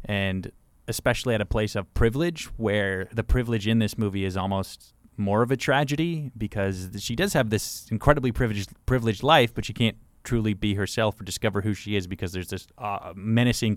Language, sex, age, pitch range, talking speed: English, male, 20-39, 95-120 Hz, 190 wpm